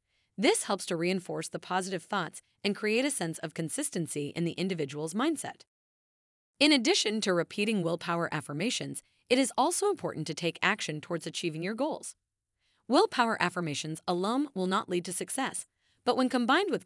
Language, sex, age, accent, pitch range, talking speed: English, female, 30-49, American, 165-245 Hz, 165 wpm